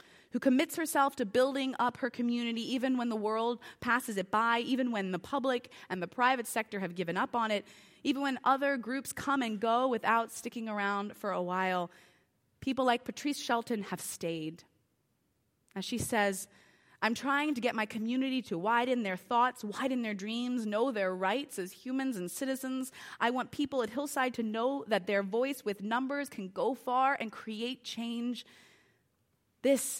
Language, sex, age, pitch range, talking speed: English, female, 20-39, 190-250 Hz, 180 wpm